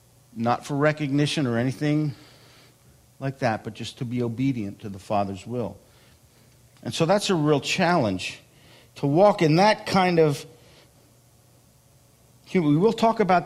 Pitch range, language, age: 125-170 Hz, English, 50-69